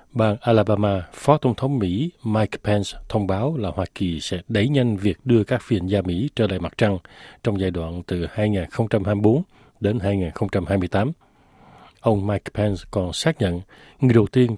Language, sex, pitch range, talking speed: Vietnamese, male, 95-120 Hz, 175 wpm